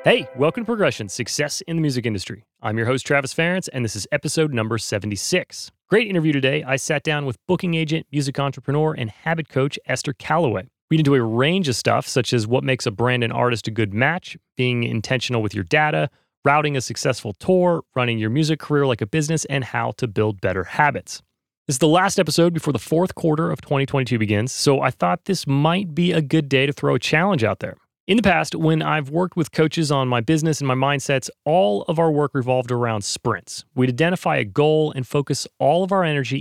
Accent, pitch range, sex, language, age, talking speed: American, 125-165 Hz, male, English, 30-49, 220 wpm